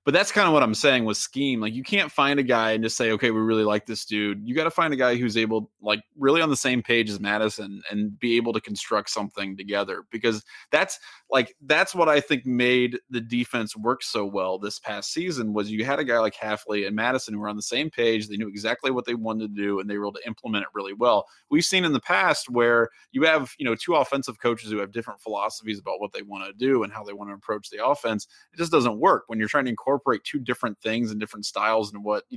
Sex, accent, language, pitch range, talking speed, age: male, American, English, 105-135 Hz, 265 wpm, 20-39